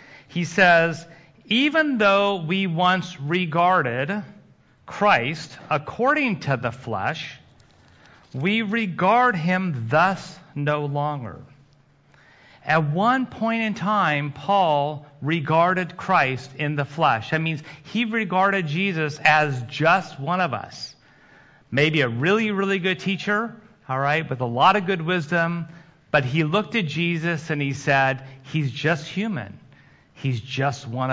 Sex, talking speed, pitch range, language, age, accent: male, 130 wpm, 135-185 Hz, English, 40-59, American